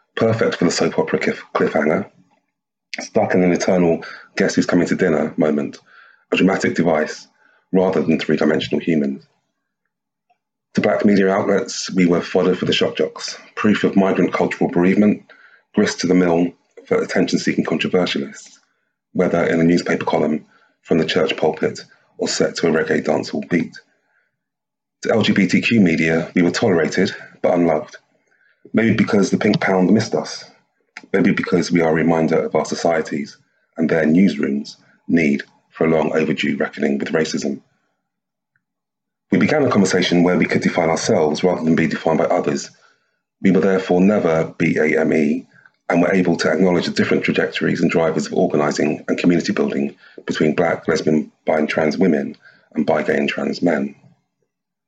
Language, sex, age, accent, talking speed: English, male, 30-49, British, 160 wpm